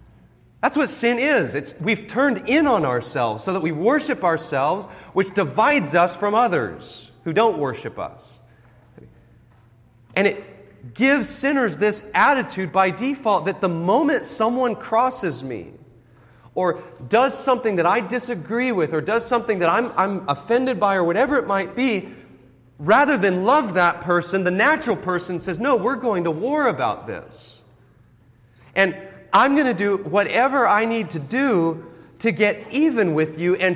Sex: male